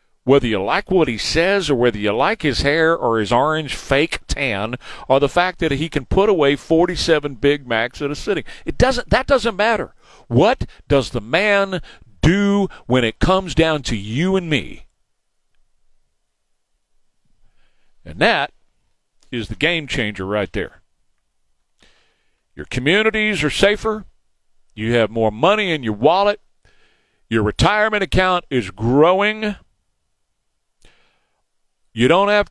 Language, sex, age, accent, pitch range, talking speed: English, male, 50-69, American, 115-180 Hz, 140 wpm